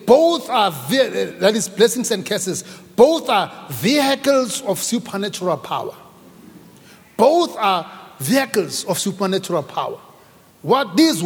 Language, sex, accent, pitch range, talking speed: English, male, South African, 195-275 Hz, 115 wpm